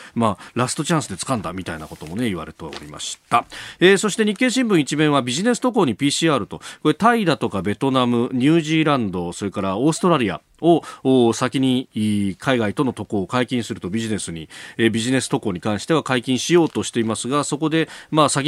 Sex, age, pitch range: male, 40-59, 105-155 Hz